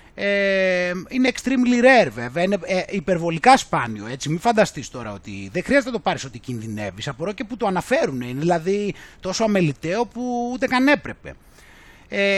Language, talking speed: Greek, 155 wpm